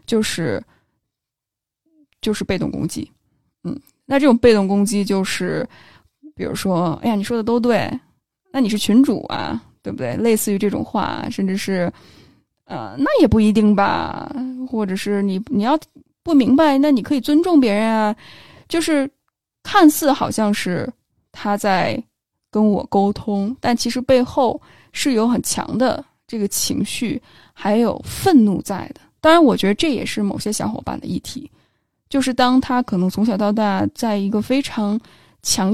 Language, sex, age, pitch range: Chinese, female, 10-29, 210-270 Hz